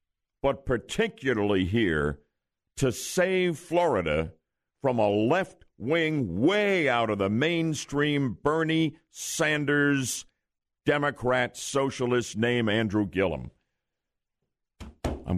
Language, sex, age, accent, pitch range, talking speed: English, male, 60-79, American, 105-155 Hz, 85 wpm